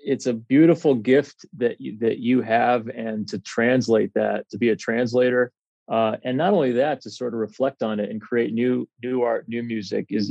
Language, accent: English, American